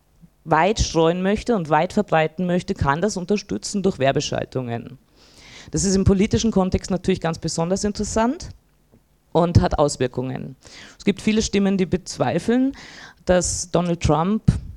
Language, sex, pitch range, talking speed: German, female, 155-200 Hz, 135 wpm